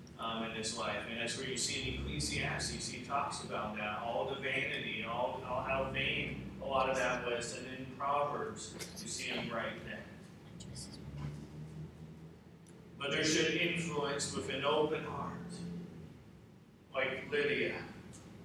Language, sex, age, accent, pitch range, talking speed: English, male, 40-59, American, 140-190 Hz, 145 wpm